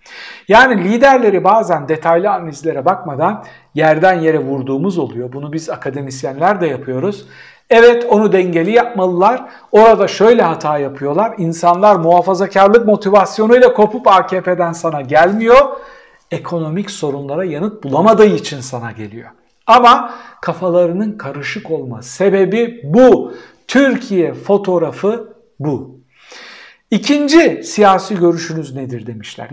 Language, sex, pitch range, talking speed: Turkish, male, 140-210 Hz, 105 wpm